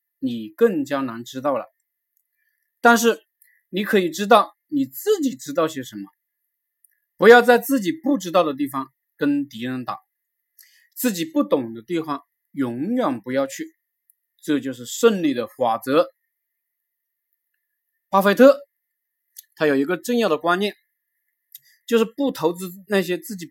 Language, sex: Chinese, male